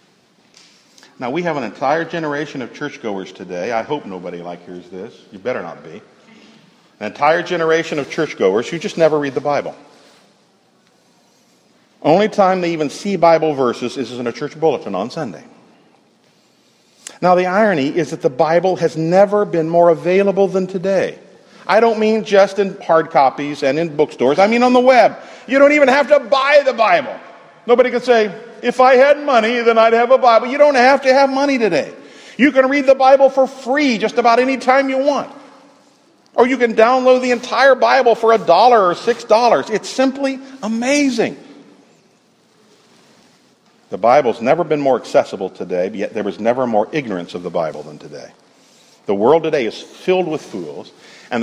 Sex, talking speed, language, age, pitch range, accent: male, 180 wpm, English, 50-69, 160-260 Hz, American